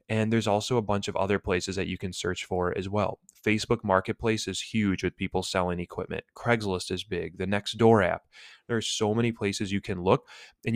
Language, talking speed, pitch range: English, 210 wpm, 90-105 Hz